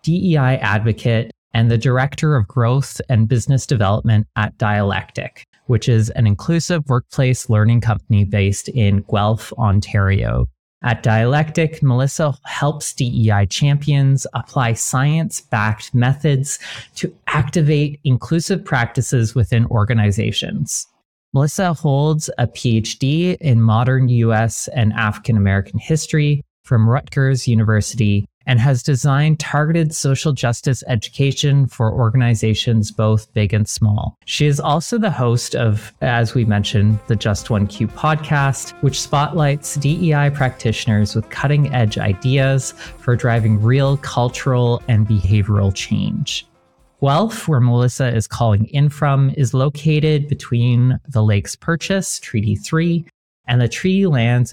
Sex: male